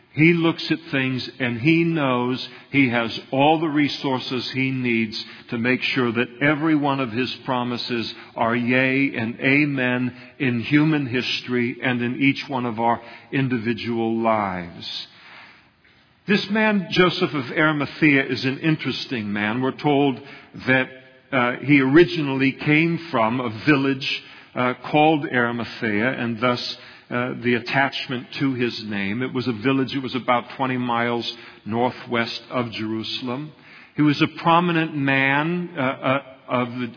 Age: 50-69